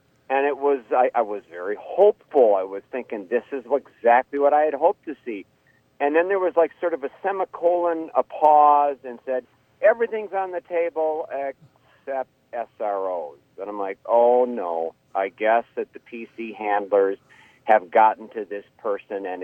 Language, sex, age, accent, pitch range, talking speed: English, male, 50-69, American, 110-165 Hz, 175 wpm